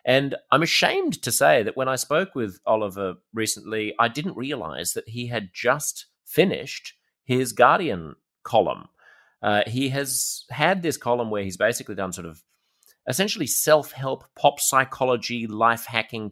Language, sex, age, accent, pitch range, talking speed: English, male, 30-49, Australian, 95-120 Hz, 150 wpm